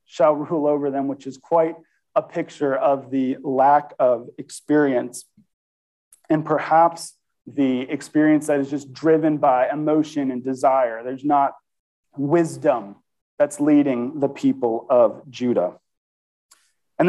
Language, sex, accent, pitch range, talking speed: English, male, American, 140-160 Hz, 125 wpm